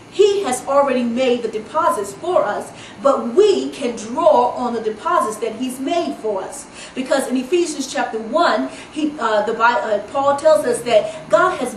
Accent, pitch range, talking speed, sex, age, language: American, 245-320 Hz, 165 wpm, female, 40-59, English